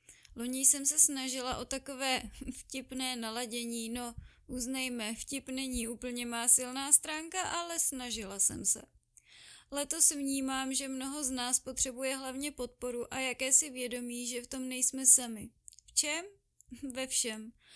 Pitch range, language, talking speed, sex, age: 245-270 Hz, Czech, 140 wpm, female, 20-39